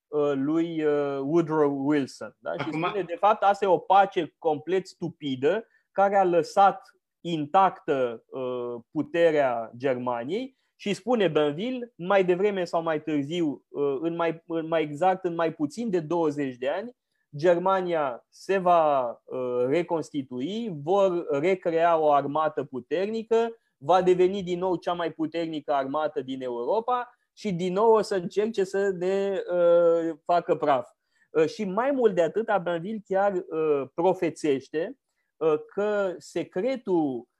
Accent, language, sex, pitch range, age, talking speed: native, Romanian, male, 150-200 Hz, 20-39, 135 wpm